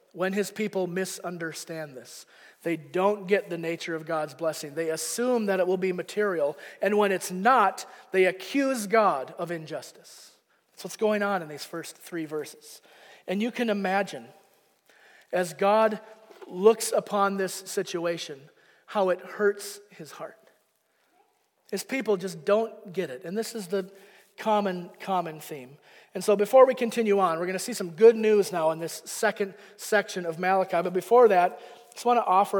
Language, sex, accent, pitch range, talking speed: English, male, American, 165-205 Hz, 175 wpm